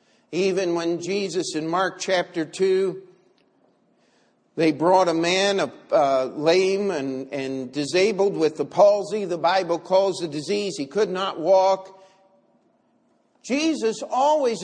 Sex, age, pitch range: male, 50-69, 145-215 Hz